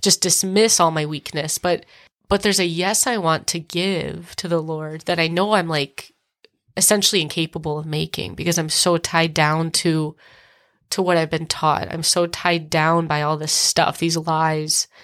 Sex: female